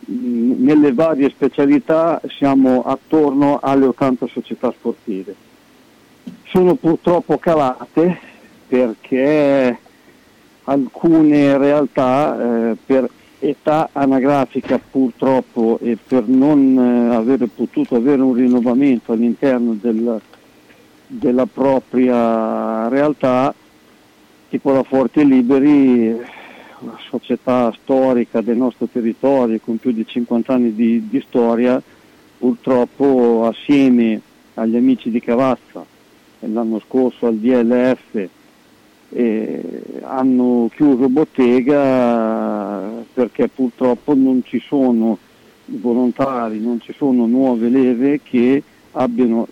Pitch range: 120-140 Hz